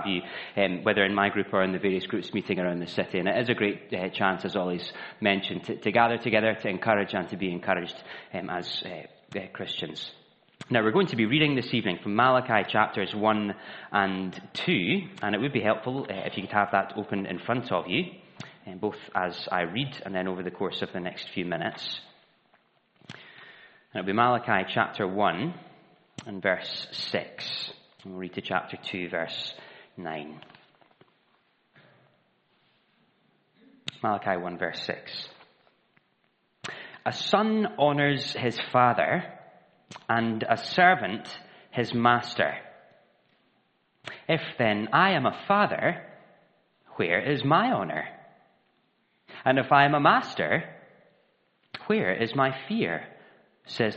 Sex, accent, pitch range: male, British, 95-125 Hz